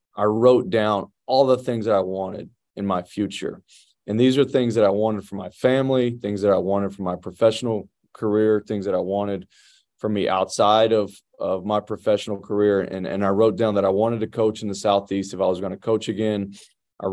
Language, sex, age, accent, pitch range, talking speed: English, male, 20-39, American, 100-115 Hz, 220 wpm